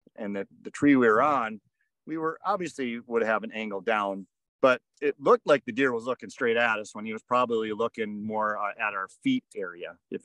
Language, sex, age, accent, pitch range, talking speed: English, male, 40-59, American, 105-145 Hz, 215 wpm